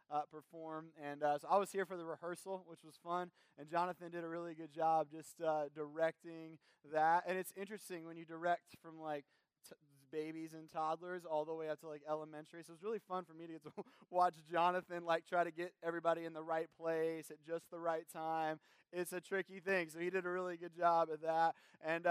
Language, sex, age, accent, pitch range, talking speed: English, male, 20-39, American, 160-195 Hz, 225 wpm